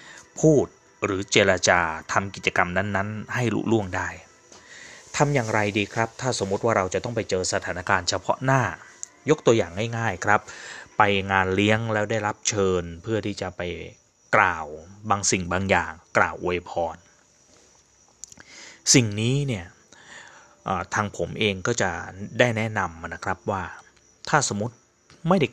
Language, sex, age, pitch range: Thai, male, 20-39, 95-115 Hz